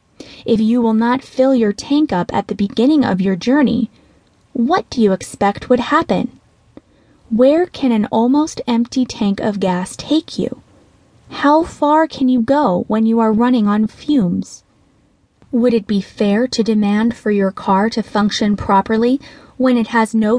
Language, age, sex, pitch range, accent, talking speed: English, 20-39, female, 200-250 Hz, American, 170 wpm